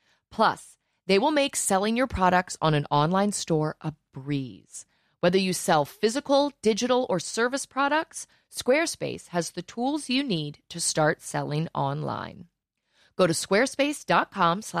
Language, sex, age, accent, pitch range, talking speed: English, female, 30-49, American, 160-240 Hz, 140 wpm